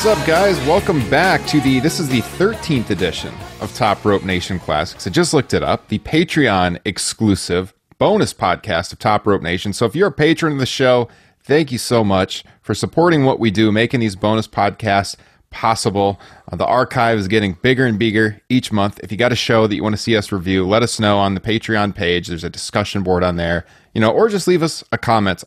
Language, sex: English, male